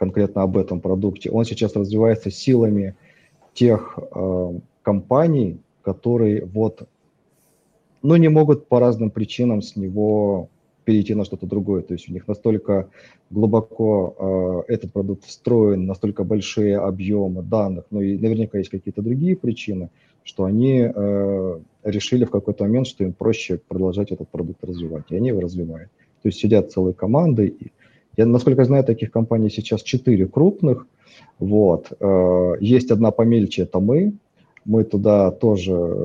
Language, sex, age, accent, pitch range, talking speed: Russian, male, 30-49, native, 95-120 Hz, 145 wpm